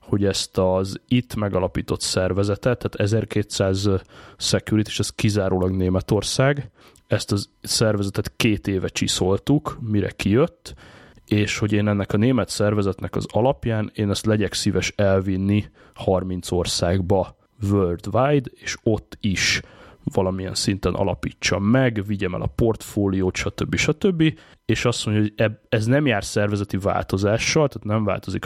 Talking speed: 135 wpm